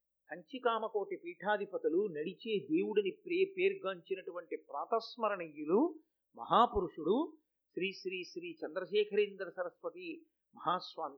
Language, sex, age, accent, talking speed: Telugu, male, 50-69, native, 85 wpm